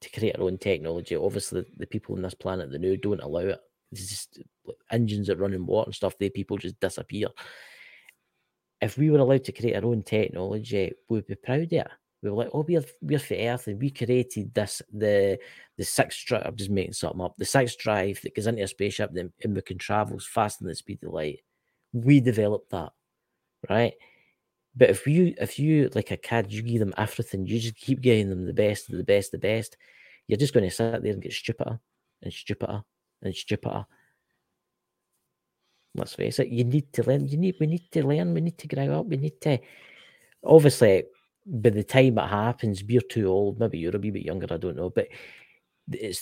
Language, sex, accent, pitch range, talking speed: English, male, British, 100-130 Hz, 210 wpm